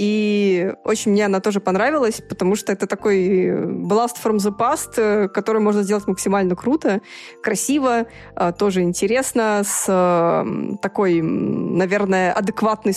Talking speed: 120 wpm